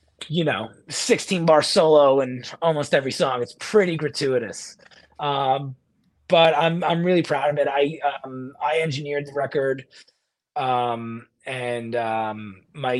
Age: 30-49